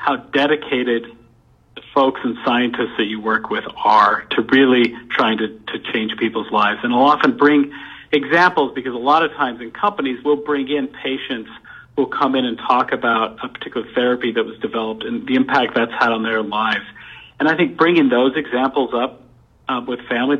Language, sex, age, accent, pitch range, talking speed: English, male, 50-69, American, 115-145 Hz, 190 wpm